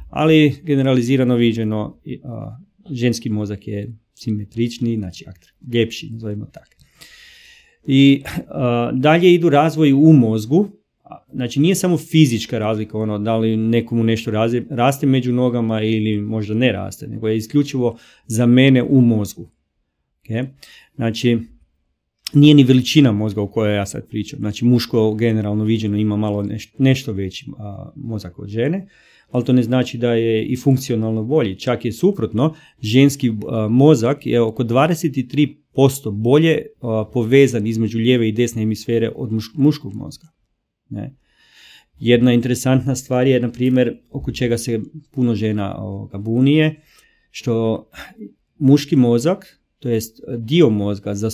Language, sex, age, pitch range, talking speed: Croatian, male, 40-59, 110-140 Hz, 130 wpm